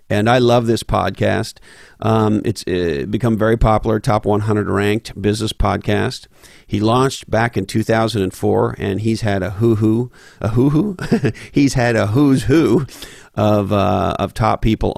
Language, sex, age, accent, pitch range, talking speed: English, male, 50-69, American, 95-115 Hz, 175 wpm